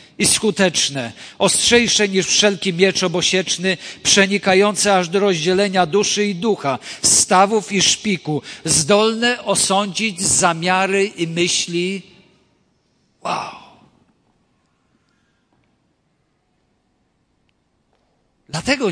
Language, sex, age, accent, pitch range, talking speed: Polish, male, 50-69, native, 180-220 Hz, 75 wpm